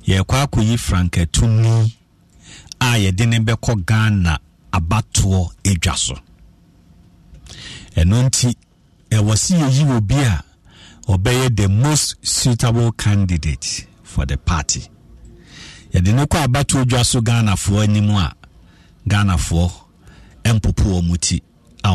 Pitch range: 90-130 Hz